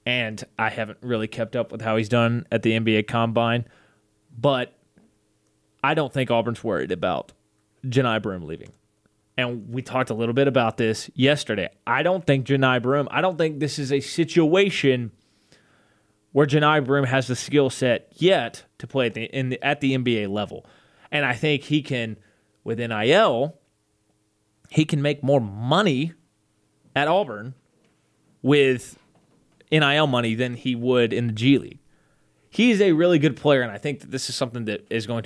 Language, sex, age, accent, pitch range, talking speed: English, male, 20-39, American, 110-140 Hz, 170 wpm